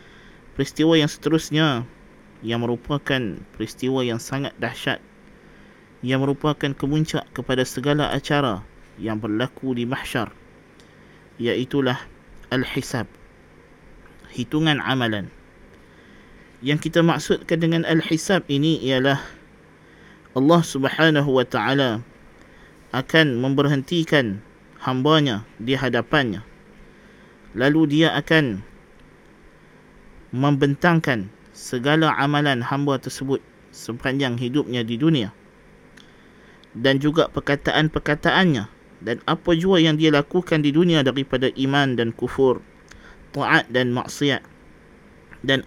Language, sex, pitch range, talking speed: Malay, male, 125-155 Hz, 90 wpm